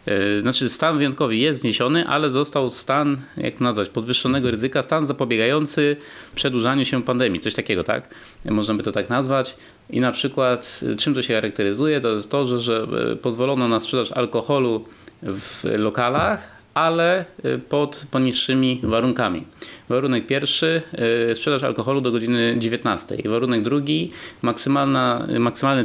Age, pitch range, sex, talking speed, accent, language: 30-49, 120-145 Hz, male, 130 wpm, native, Polish